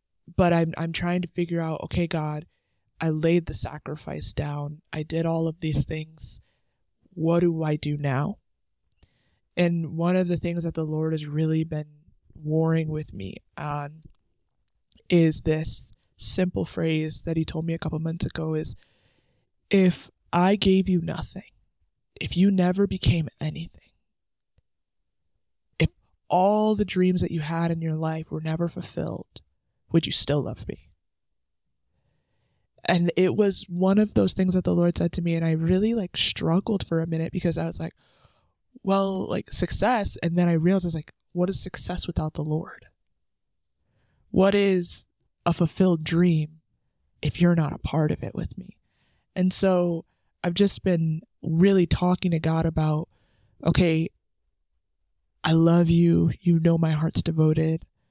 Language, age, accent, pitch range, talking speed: English, 20-39, American, 150-175 Hz, 160 wpm